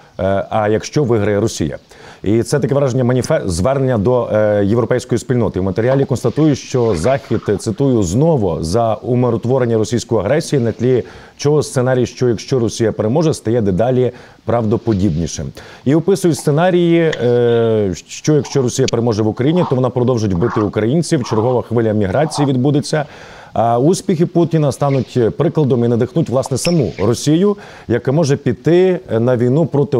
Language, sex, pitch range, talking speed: Ukrainian, male, 115-150 Hz, 135 wpm